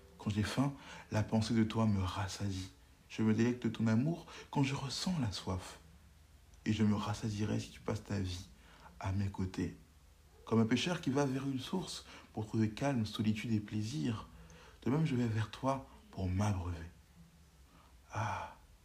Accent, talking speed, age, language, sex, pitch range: French, 175 wpm, 60-79, French, male, 95-145 Hz